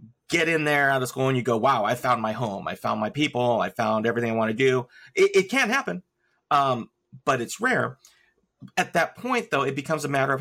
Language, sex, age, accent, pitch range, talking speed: English, male, 30-49, American, 120-155 Hz, 240 wpm